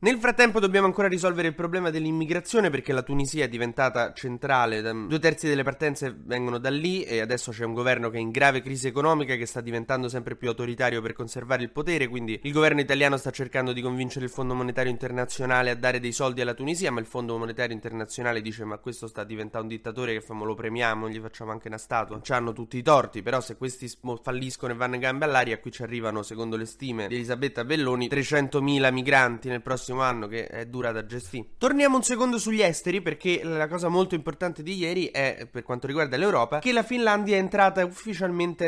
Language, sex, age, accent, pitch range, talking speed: Italian, male, 20-39, native, 115-150 Hz, 210 wpm